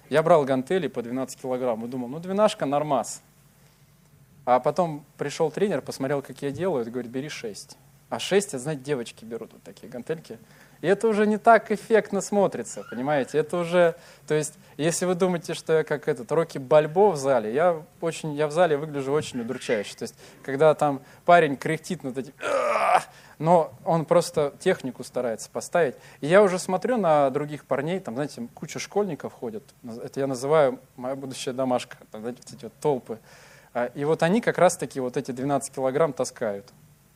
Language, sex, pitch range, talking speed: Russian, male, 135-175 Hz, 175 wpm